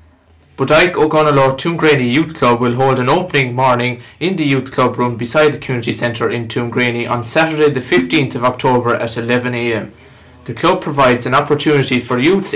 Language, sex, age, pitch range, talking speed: English, male, 20-39, 120-150 Hz, 170 wpm